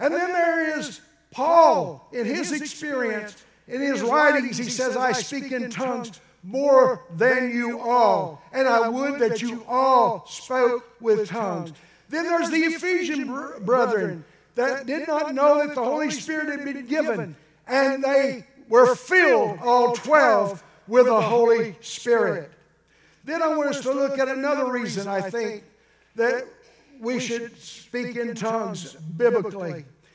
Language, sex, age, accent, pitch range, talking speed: English, male, 60-79, American, 215-260 Hz, 145 wpm